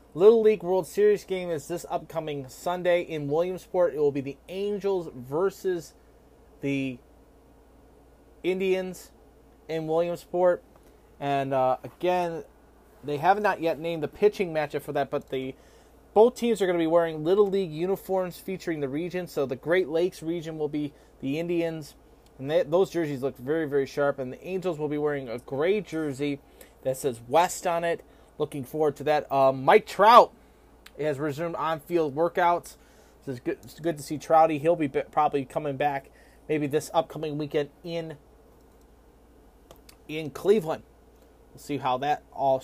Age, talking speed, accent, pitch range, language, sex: 30-49, 165 wpm, American, 140-175 Hz, English, male